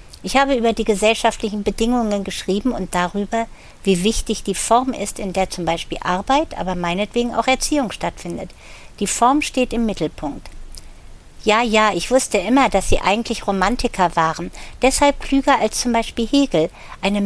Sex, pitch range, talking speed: female, 195-250 Hz, 160 wpm